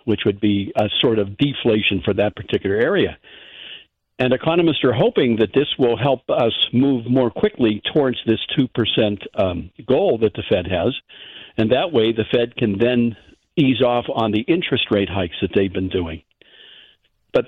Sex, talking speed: male, 175 wpm